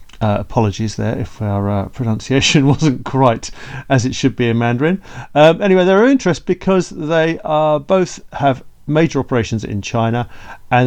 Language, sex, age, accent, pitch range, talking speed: English, male, 40-59, British, 105-135 Hz, 170 wpm